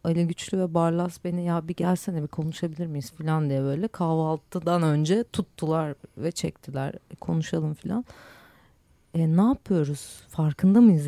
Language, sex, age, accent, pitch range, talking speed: Turkish, female, 40-59, native, 155-195 Hz, 145 wpm